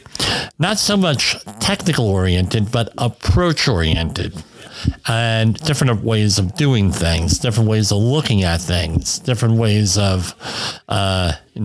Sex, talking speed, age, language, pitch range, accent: male, 125 wpm, 50-69, English, 105-145 Hz, American